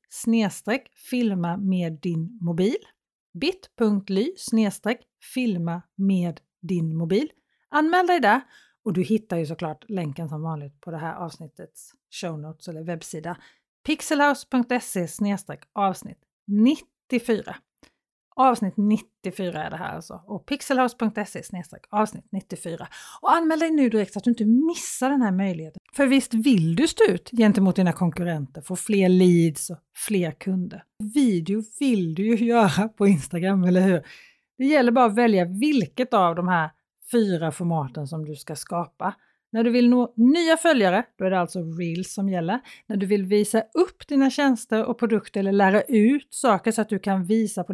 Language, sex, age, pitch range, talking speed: Swedish, female, 40-59, 180-240 Hz, 160 wpm